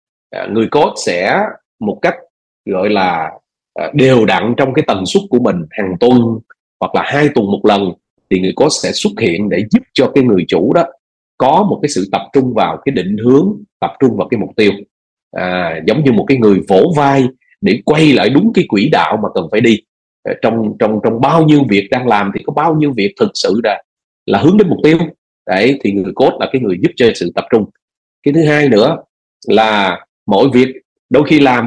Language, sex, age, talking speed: Vietnamese, male, 30-49, 215 wpm